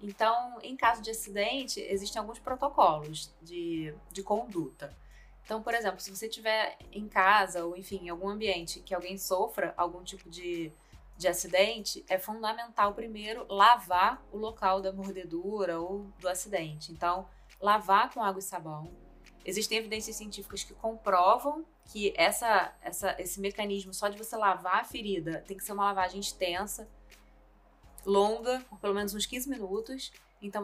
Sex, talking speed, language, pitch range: female, 150 wpm, Portuguese, 185-220 Hz